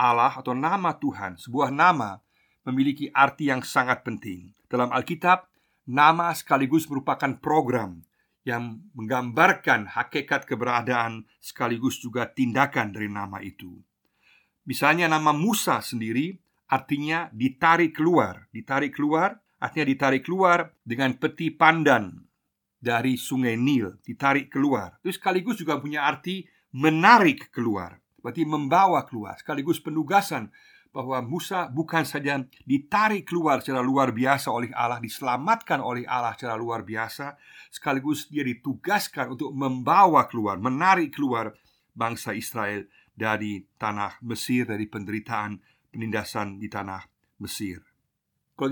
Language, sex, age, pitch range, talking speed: Indonesian, male, 50-69, 115-155 Hz, 120 wpm